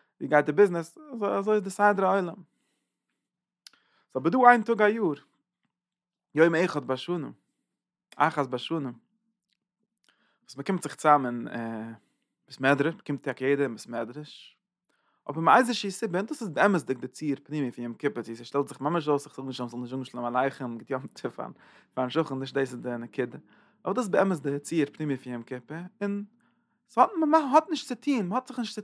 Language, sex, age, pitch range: English, male, 20-39, 130-190 Hz